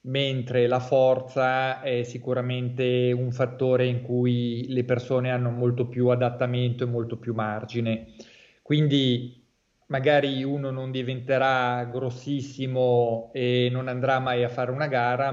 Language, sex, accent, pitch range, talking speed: Italian, male, native, 120-130 Hz, 130 wpm